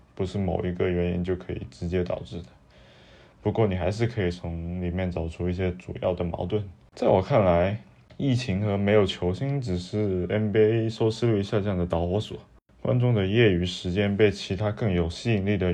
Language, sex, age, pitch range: Chinese, male, 20-39, 90-105 Hz